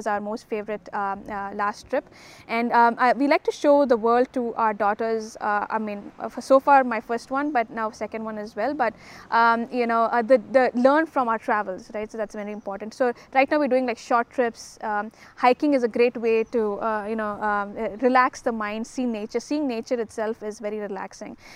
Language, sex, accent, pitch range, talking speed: English, female, Indian, 215-245 Hz, 225 wpm